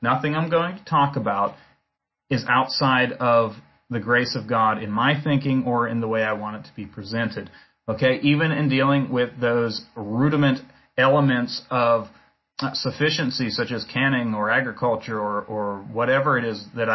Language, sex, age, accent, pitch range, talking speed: English, male, 30-49, American, 115-140 Hz, 170 wpm